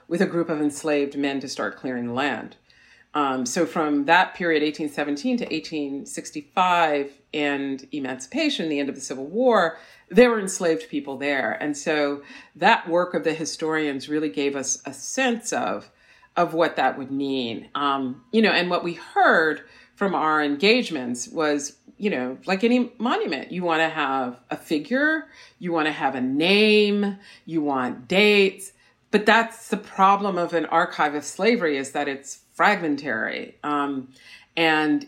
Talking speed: 165 wpm